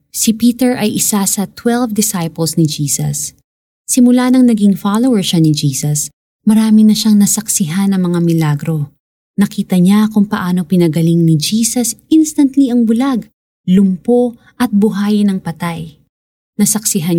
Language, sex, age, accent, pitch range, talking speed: Filipino, female, 20-39, native, 170-225 Hz, 135 wpm